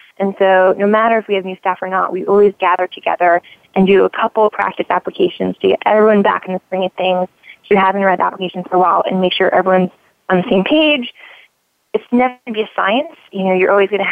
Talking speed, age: 255 wpm, 20-39